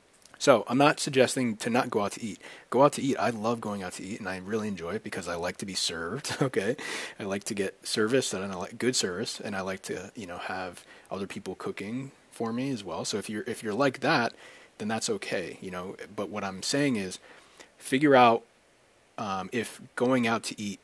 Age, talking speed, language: 30-49, 235 wpm, English